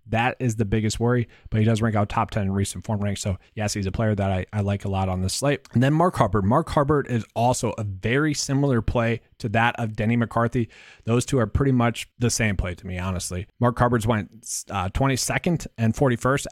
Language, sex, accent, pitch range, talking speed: English, male, American, 105-125 Hz, 235 wpm